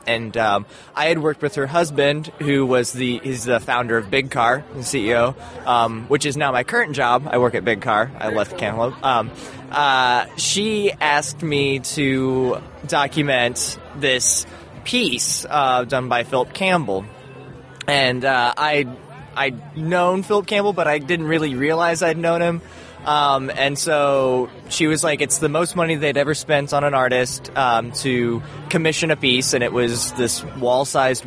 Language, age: English, 20-39